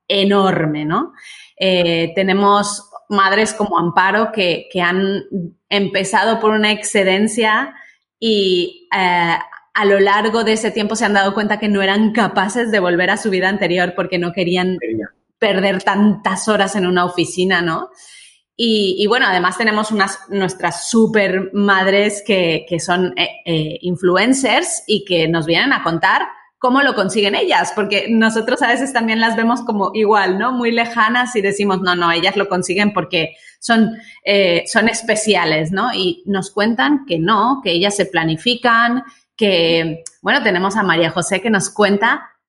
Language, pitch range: Spanish, 185-225 Hz